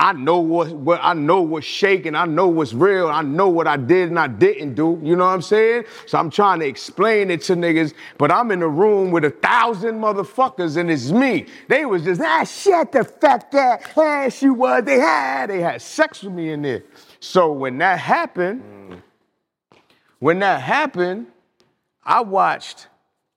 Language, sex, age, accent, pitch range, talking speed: English, male, 30-49, American, 165-245 Hz, 195 wpm